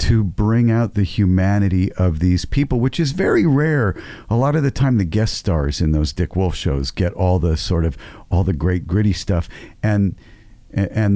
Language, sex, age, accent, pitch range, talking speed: English, male, 50-69, American, 85-110 Hz, 200 wpm